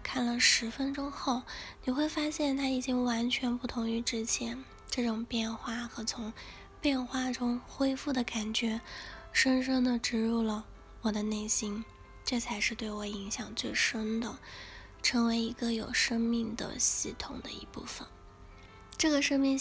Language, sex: Chinese, female